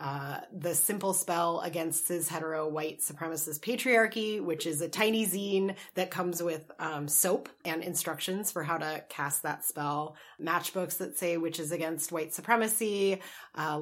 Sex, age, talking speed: female, 30-49, 160 wpm